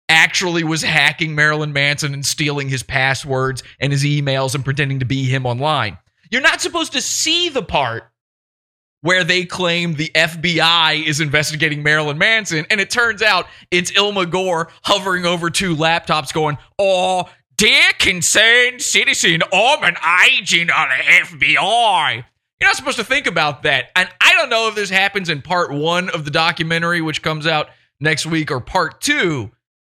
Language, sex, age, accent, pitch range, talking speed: English, male, 30-49, American, 135-175 Hz, 170 wpm